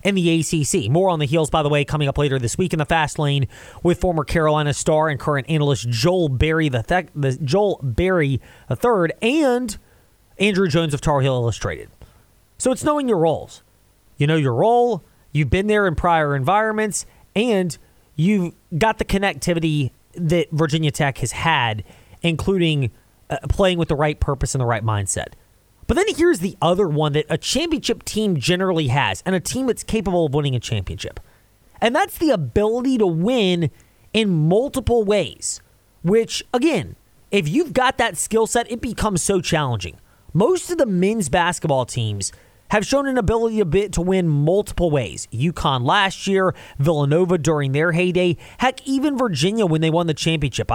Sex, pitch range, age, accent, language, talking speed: male, 140-195 Hz, 30-49, American, English, 180 wpm